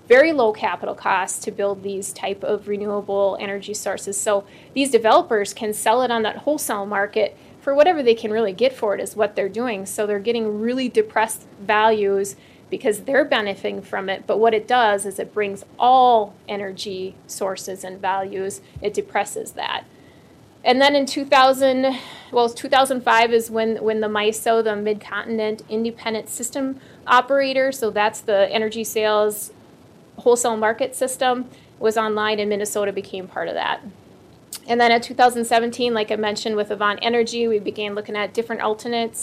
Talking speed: 165 wpm